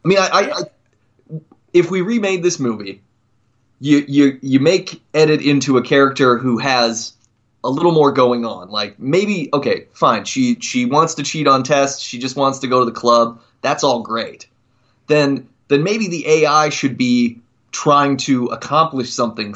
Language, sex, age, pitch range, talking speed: English, male, 20-39, 120-155 Hz, 180 wpm